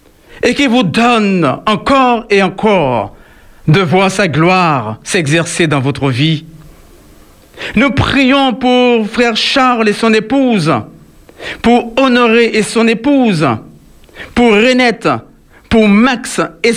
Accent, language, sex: French, French, male